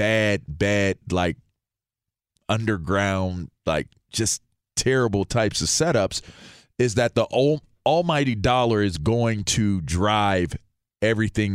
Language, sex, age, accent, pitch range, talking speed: English, male, 40-59, American, 110-150 Hz, 105 wpm